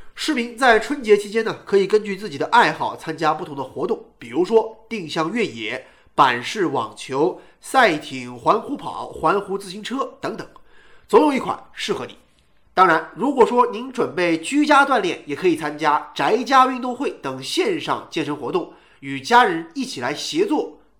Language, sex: Chinese, male